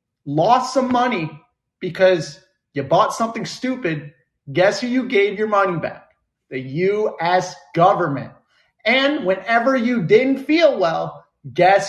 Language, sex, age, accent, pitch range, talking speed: English, male, 30-49, American, 165-235 Hz, 125 wpm